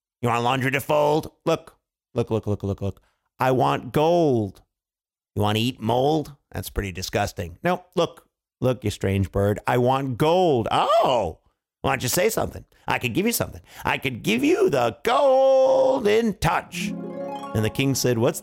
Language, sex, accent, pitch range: English, male, American, 120-190 Hz